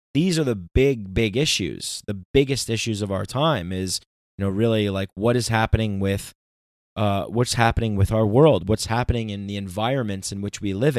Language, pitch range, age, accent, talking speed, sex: English, 100-120 Hz, 30-49, American, 185 wpm, male